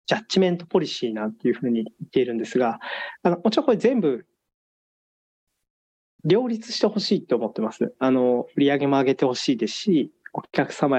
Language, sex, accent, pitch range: Japanese, male, native, 120-190 Hz